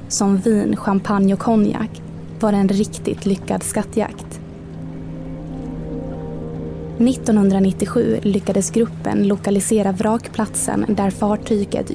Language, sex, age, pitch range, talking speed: Swedish, female, 20-39, 180-215 Hz, 85 wpm